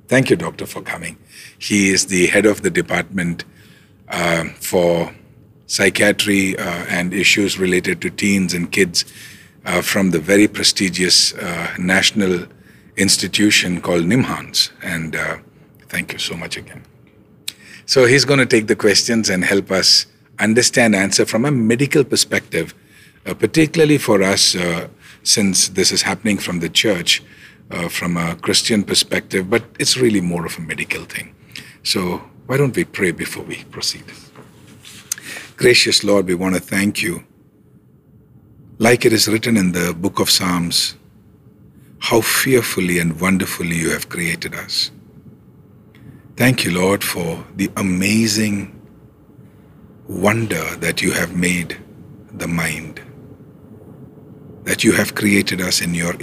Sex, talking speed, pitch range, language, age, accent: male, 140 wpm, 90-110 Hz, English, 50-69, Indian